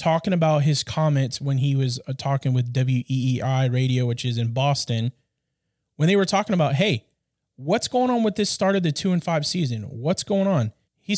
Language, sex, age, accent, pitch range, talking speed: English, male, 20-39, American, 130-170 Hz, 200 wpm